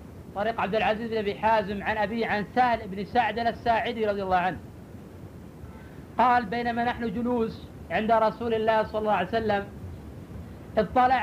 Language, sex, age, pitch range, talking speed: Arabic, female, 50-69, 155-245 Hz, 150 wpm